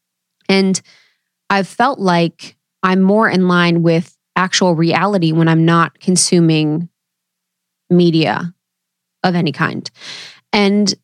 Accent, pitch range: American, 165-190 Hz